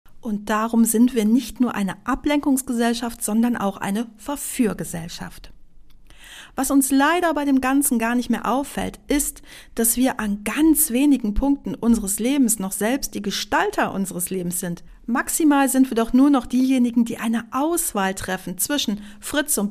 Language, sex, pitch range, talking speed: German, female, 195-260 Hz, 160 wpm